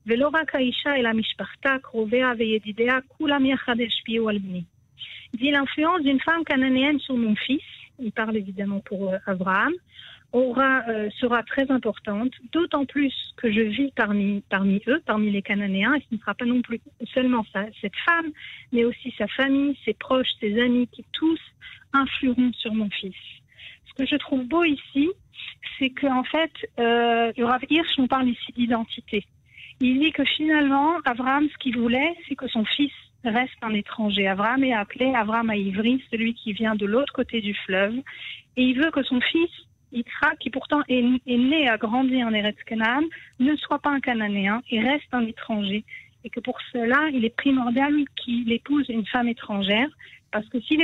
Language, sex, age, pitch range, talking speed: Hebrew, female, 50-69, 225-275 Hz, 160 wpm